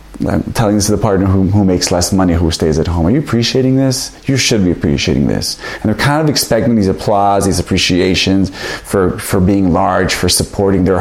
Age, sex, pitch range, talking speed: 30-49, male, 90-105 Hz, 220 wpm